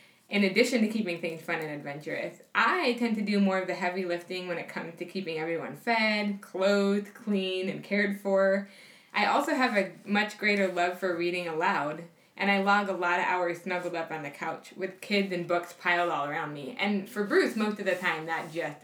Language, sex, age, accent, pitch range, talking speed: English, female, 20-39, American, 170-205 Hz, 215 wpm